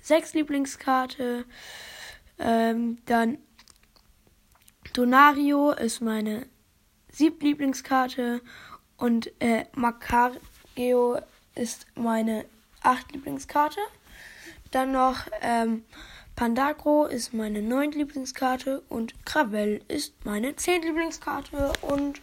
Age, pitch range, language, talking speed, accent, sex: 10-29, 235-285 Hz, German, 80 wpm, German, female